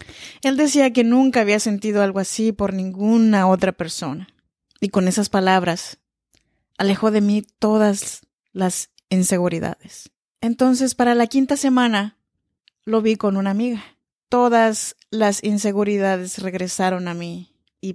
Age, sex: 30-49, female